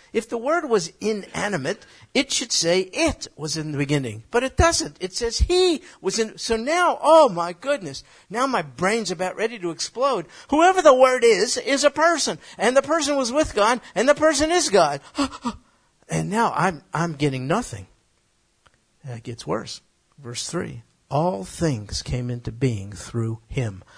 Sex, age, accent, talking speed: male, 50-69, American, 175 wpm